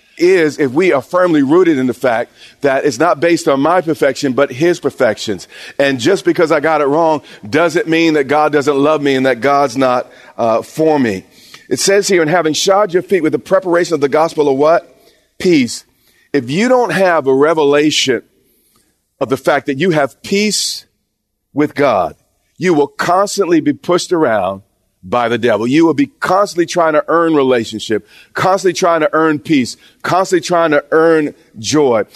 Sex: male